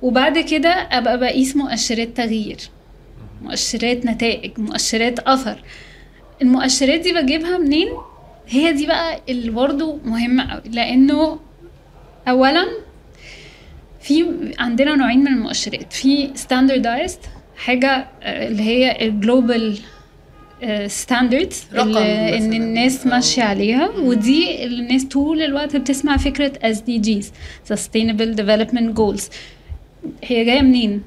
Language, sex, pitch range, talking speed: Arabic, female, 230-280 Hz, 100 wpm